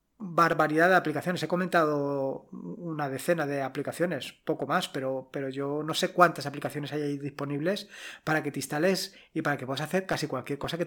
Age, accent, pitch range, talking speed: 20-39, Spanish, 145-180 Hz, 180 wpm